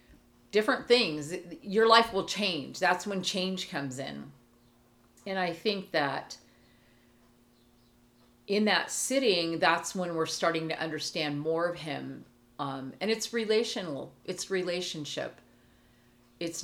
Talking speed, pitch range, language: 125 wpm, 150-185 Hz, English